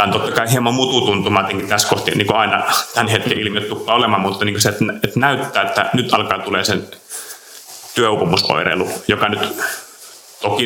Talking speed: 150 wpm